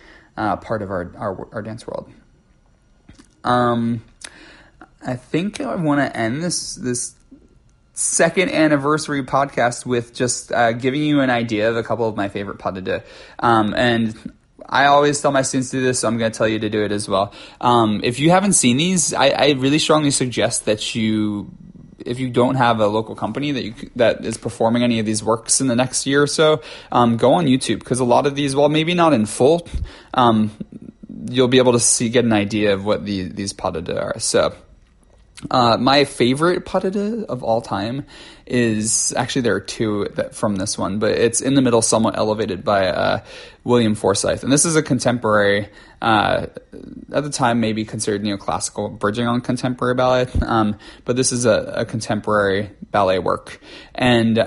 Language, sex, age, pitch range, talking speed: English, male, 30-49, 110-140 Hz, 195 wpm